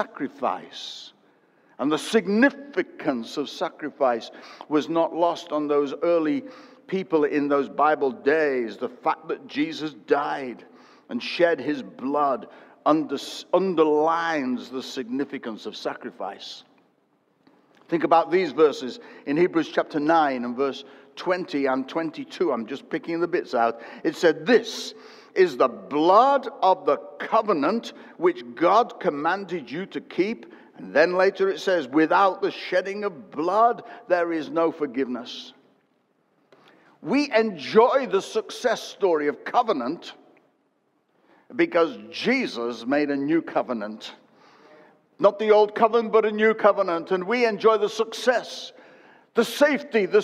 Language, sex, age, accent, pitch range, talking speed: English, male, 60-79, British, 160-265 Hz, 130 wpm